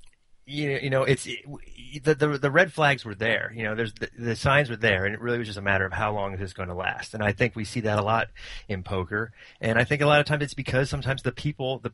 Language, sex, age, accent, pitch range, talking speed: English, male, 30-49, American, 105-135 Hz, 290 wpm